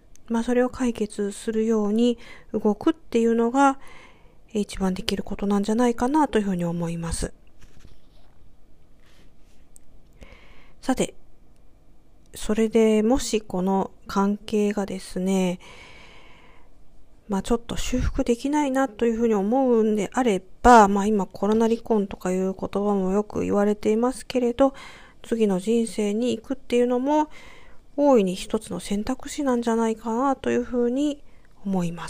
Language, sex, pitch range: Japanese, female, 195-245 Hz